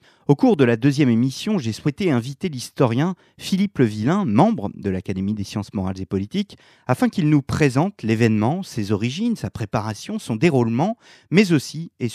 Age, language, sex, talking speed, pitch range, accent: 40-59, French, male, 175 wpm, 110-160 Hz, French